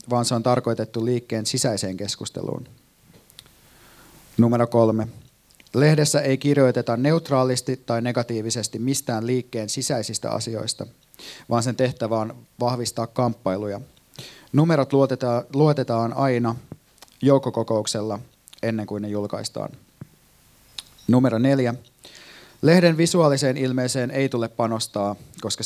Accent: native